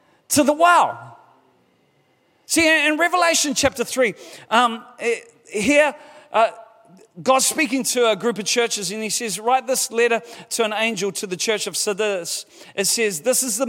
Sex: male